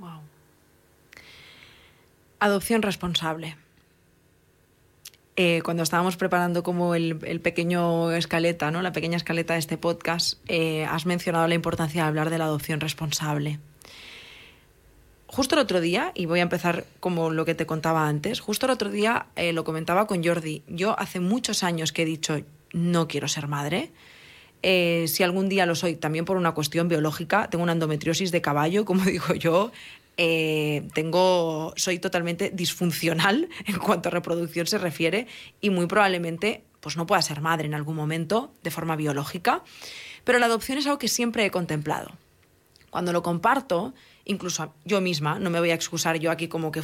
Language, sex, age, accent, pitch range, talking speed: Spanish, female, 20-39, Spanish, 160-185 Hz, 170 wpm